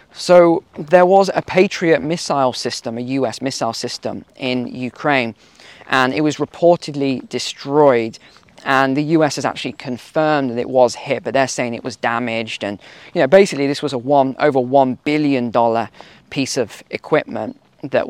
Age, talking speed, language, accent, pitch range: 20-39, 160 wpm, English, British, 125-180 Hz